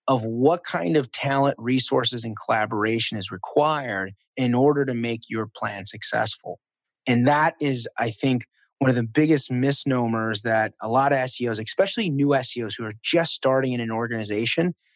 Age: 30-49